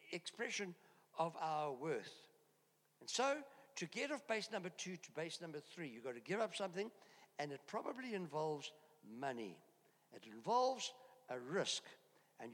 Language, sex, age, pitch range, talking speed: English, male, 60-79, 160-215 Hz, 155 wpm